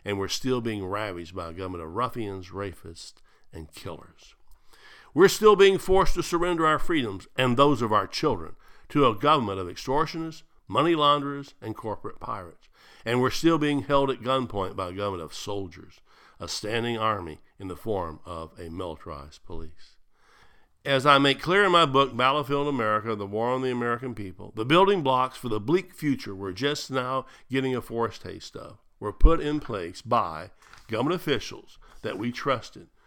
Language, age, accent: English, 60-79, American